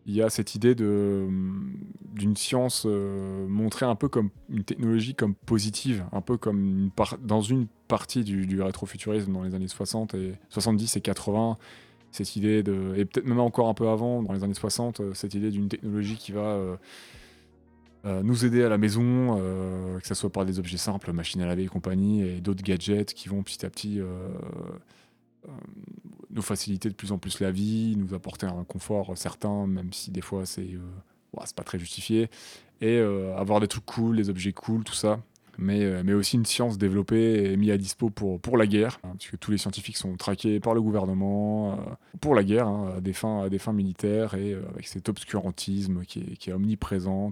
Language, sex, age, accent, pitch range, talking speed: French, male, 20-39, French, 95-110 Hz, 215 wpm